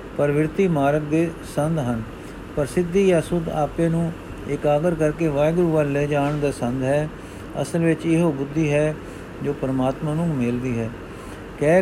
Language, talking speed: Punjabi, 140 wpm